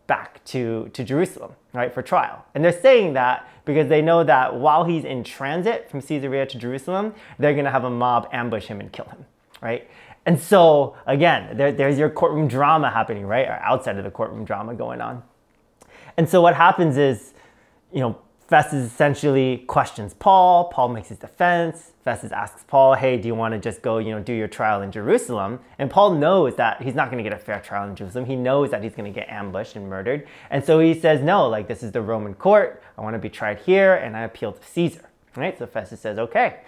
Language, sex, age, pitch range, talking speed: English, male, 30-49, 115-155 Hz, 215 wpm